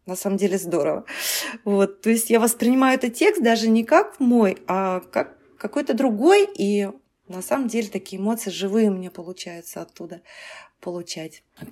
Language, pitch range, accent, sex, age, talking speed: Russian, 185-235 Hz, native, female, 30-49, 160 wpm